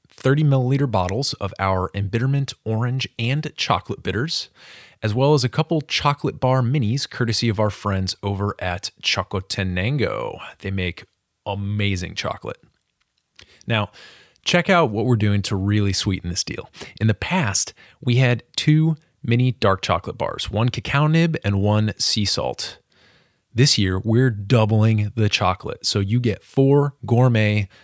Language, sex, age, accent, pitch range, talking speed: English, male, 30-49, American, 100-130 Hz, 145 wpm